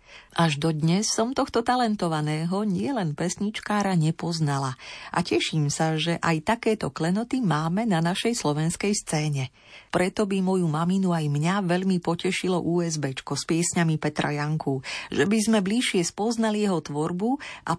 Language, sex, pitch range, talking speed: Slovak, female, 155-215 Hz, 140 wpm